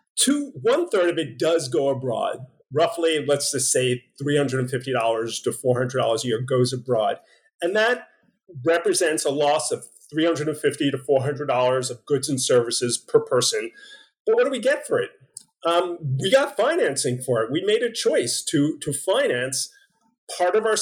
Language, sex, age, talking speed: English, male, 40-59, 165 wpm